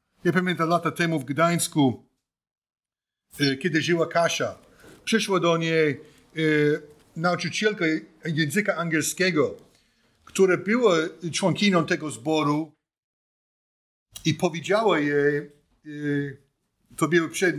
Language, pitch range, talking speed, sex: Polish, 145-185 Hz, 90 wpm, male